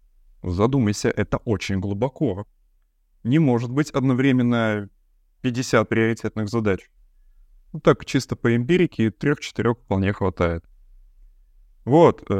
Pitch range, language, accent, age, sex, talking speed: 95-145 Hz, Russian, native, 20-39, male, 95 wpm